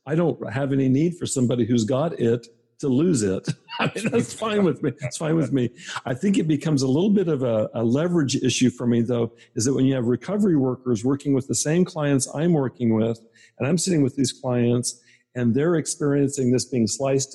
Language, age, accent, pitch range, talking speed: English, 50-69, American, 120-150 Hz, 220 wpm